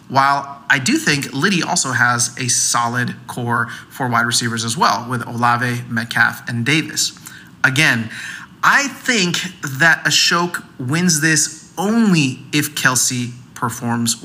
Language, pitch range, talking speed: English, 120-160 Hz, 130 wpm